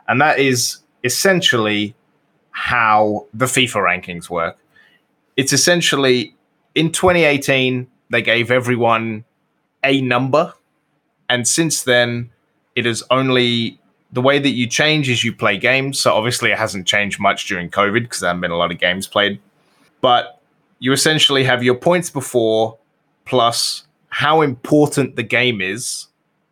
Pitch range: 110-140 Hz